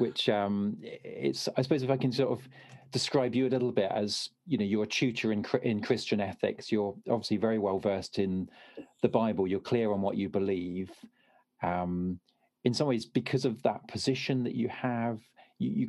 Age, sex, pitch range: 40-59, male, 100-125 Hz